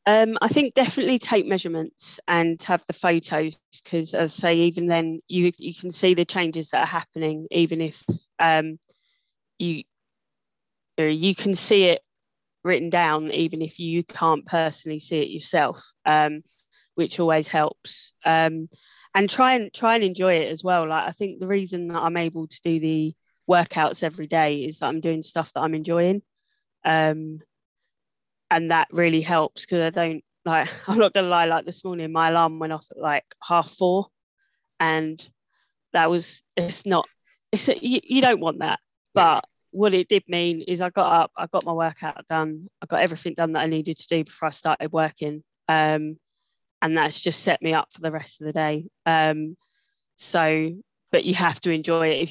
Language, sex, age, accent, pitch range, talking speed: English, female, 20-39, British, 160-180 Hz, 190 wpm